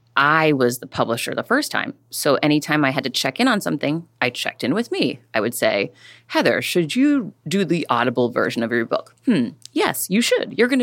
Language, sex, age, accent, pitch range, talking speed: English, female, 30-49, American, 130-170 Hz, 220 wpm